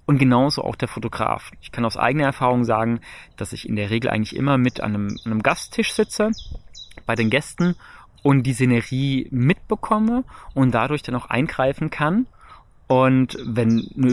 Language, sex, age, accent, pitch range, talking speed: German, male, 30-49, German, 110-135 Hz, 170 wpm